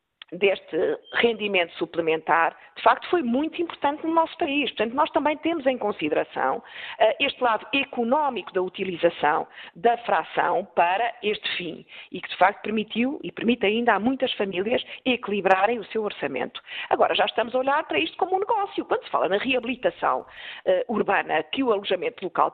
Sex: female